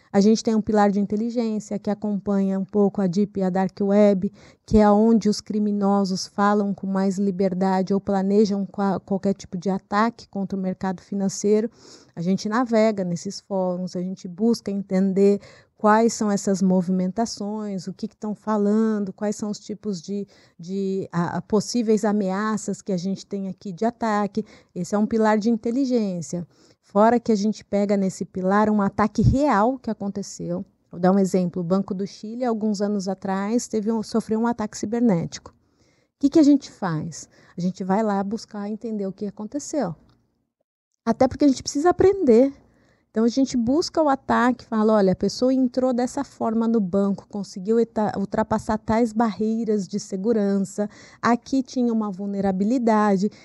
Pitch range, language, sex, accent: 195-230 Hz, Portuguese, female, Brazilian